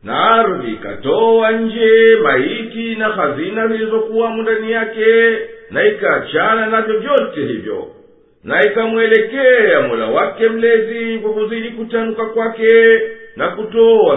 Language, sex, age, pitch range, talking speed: Swahili, male, 50-69, 220-260 Hz, 105 wpm